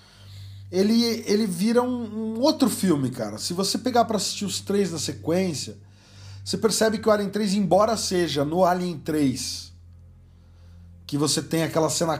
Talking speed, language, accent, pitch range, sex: 160 wpm, English, Brazilian, 130-180 Hz, male